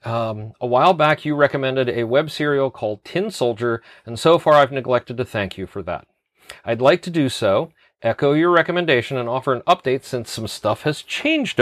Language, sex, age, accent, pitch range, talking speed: English, male, 40-59, American, 115-150 Hz, 200 wpm